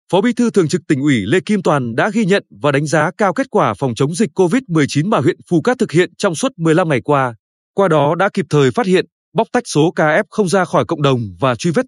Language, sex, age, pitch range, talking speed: Vietnamese, male, 20-39, 150-200 Hz, 275 wpm